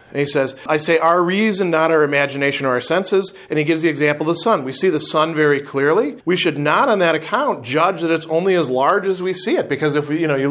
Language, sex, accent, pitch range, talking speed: English, male, American, 135-180 Hz, 265 wpm